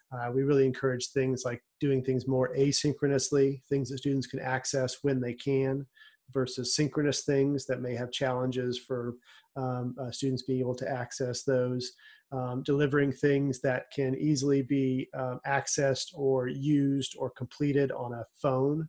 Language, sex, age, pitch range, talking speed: English, male, 30-49, 130-140 Hz, 160 wpm